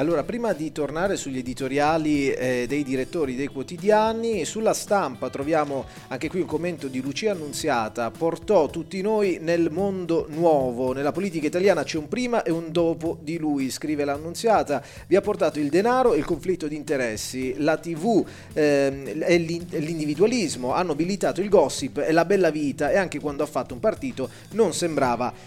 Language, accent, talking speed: Italian, native, 170 wpm